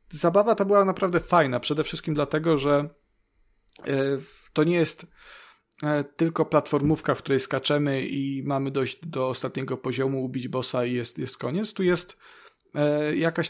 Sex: male